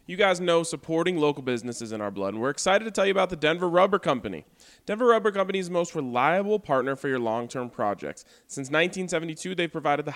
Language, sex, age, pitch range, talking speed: English, male, 20-39, 120-170 Hz, 235 wpm